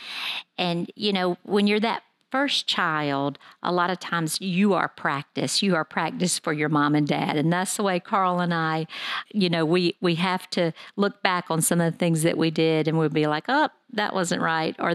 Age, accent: 50-69, American